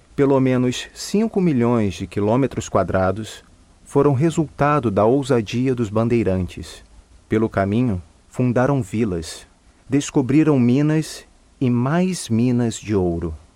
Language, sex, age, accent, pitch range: Chinese, male, 40-59, Brazilian, 90-135 Hz